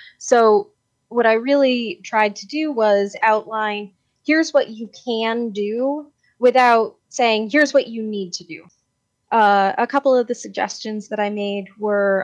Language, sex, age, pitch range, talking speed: English, female, 20-39, 180-225 Hz, 155 wpm